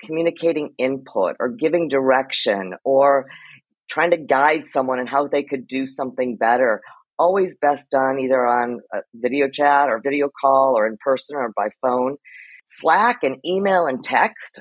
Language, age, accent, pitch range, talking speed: English, 40-59, American, 125-150 Hz, 155 wpm